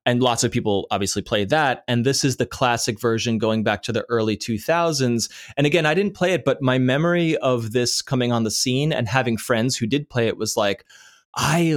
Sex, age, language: male, 20-39, English